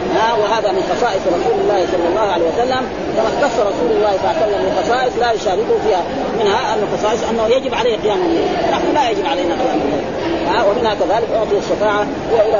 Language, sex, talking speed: Arabic, female, 200 wpm